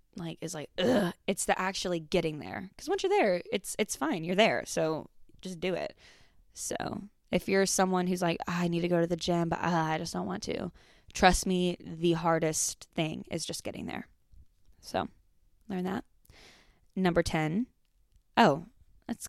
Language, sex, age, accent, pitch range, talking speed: English, female, 10-29, American, 170-210 Hz, 175 wpm